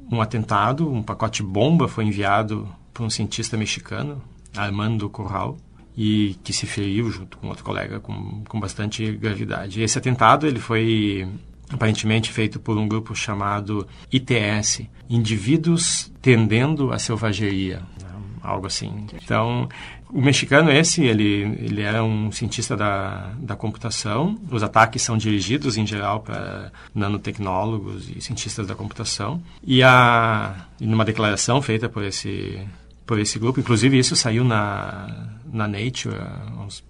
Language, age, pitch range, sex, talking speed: Arabic, 40-59, 105-125 Hz, male, 135 wpm